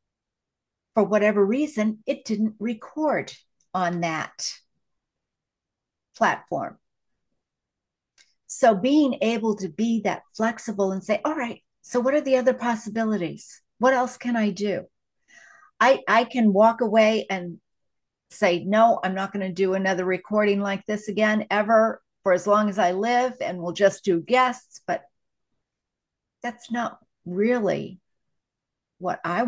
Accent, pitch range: American, 195-240 Hz